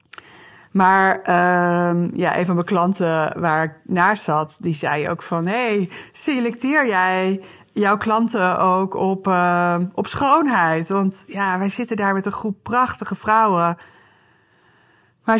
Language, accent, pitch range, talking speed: Dutch, Dutch, 175-215 Hz, 145 wpm